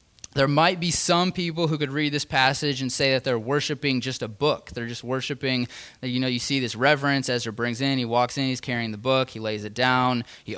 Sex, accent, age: male, American, 20-39